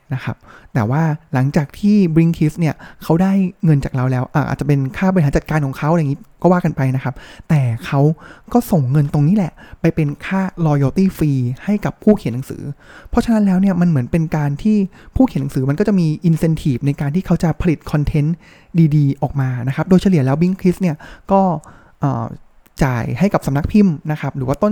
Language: Thai